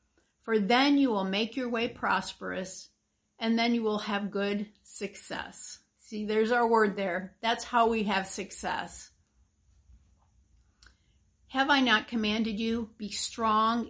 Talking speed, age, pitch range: 140 wpm, 50-69, 195-230 Hz